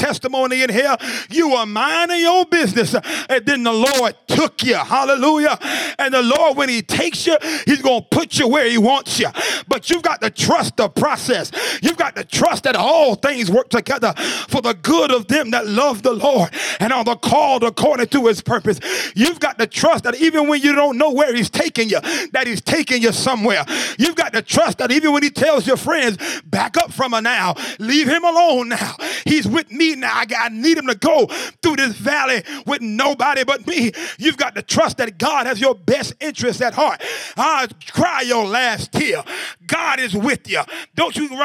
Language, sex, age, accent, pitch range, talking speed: English, male, 30-49, American, 240-300 Hz, 205 wpm